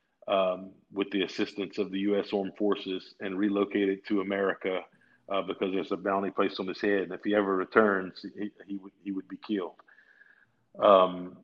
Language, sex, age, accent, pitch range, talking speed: English, male, 50-69, American, 95-105 Hz, 190 wpm